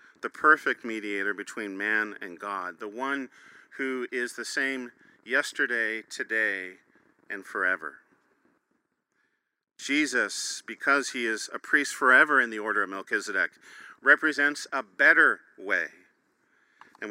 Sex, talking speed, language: male, 120 wpm, English